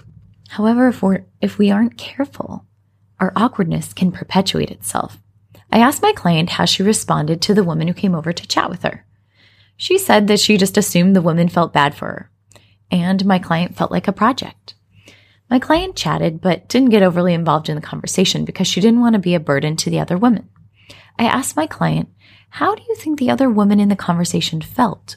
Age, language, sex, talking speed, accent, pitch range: 20-39, English, female, 205 wpm, American, 150-220 Hz